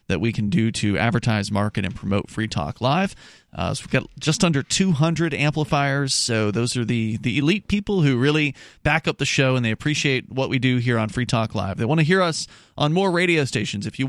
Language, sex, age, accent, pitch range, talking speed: English, male, 30-49, American, 110-145 Hz, 235 wpm